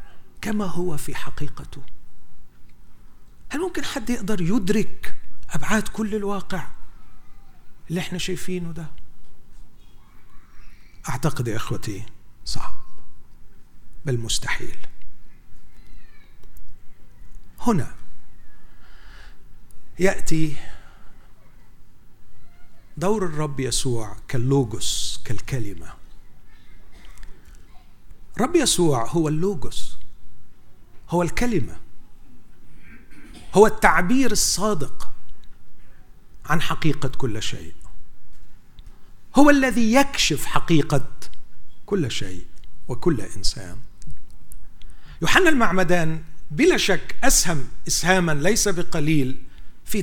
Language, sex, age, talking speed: Arabic, male, 50-69, 70 wpm